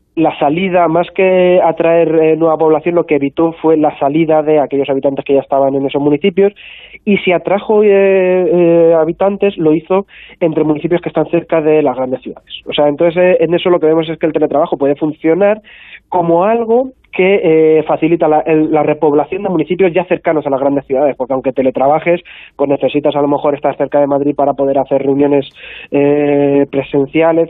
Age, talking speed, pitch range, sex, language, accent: 20-39, 195 wpm, 140-170 Hz, male, Spanish, Spanish